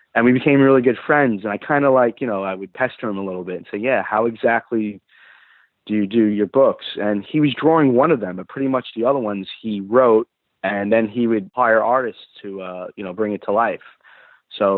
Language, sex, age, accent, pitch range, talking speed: English, male, 20-39, American, 95-125 Hz, 245 wpm